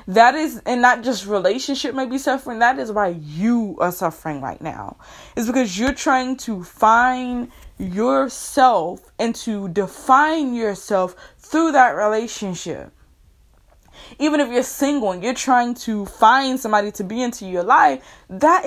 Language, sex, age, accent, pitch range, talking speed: English, female, 20-39, American, 205-290 Hz, 150 wpm